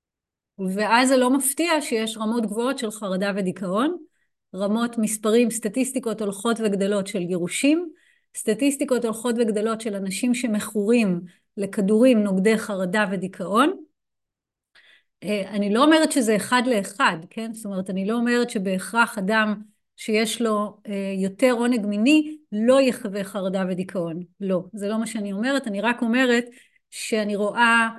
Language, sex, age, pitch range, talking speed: Hebrew, female, 30-49, 200-240 Hz, 130 wpm